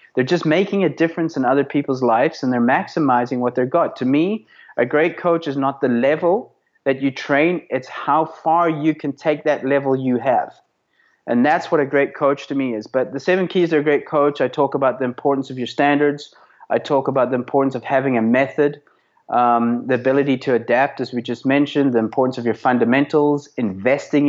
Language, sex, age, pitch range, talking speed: English, male, 30-49, 120-145 Hz, 210 wpm